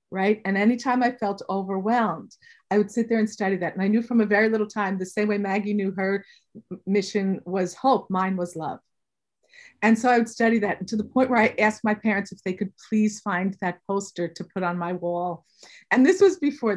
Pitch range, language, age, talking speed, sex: 190-230 Hz, English, 50-69, 230 wpm, female